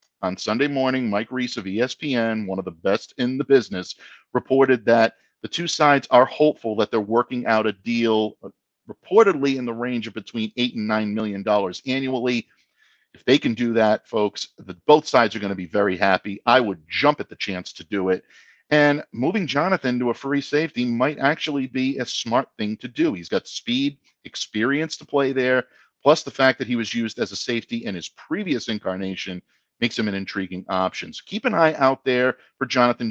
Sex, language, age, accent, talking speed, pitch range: male, English, 50-69, American, 200 wpm, 110-135 Hz